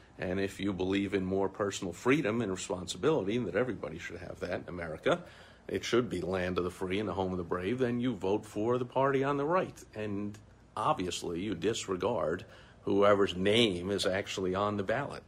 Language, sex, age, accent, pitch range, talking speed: English, male, 50-69, American, 95-125 Hz, 200 wpm